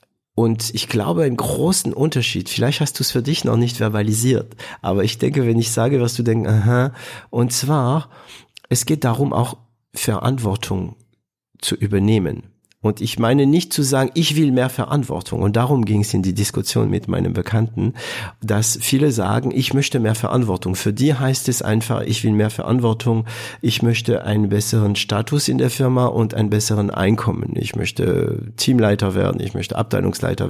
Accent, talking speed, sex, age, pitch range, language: German, 175 wpm, male, 50-69, 105-130 Hz, German